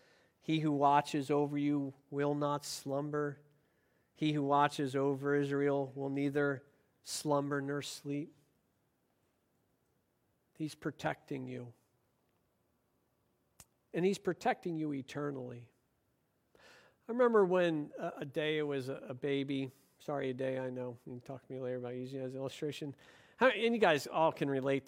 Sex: male